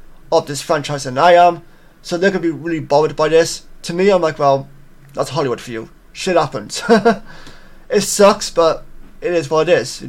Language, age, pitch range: English, 20-39, 150-175 Hz